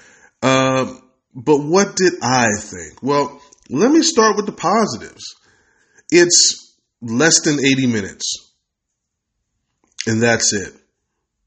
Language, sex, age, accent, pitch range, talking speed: English, male, 20-39, American, 115-165 Hz, 125 wpm